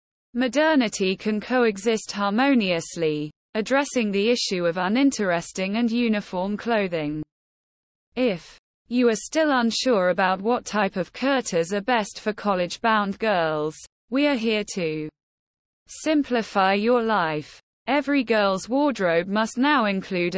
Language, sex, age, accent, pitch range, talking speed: English, female, 20-39, British, 180-245 Hz, 120 wpm